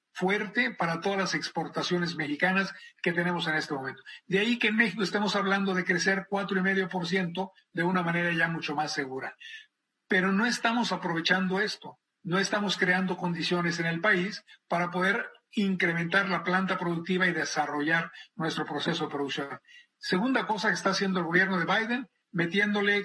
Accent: Mexican